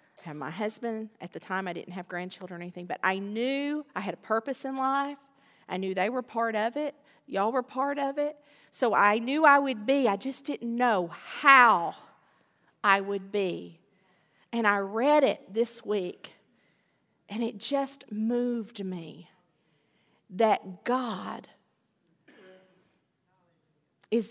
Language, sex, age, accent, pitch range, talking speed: English, female, 40-59, American, 185-255 Hz, 150 wpm